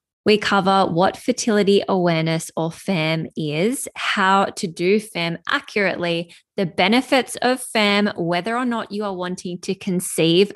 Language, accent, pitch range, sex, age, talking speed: English, Australian, 170-210 Hz, female, 20-39, 140 wpm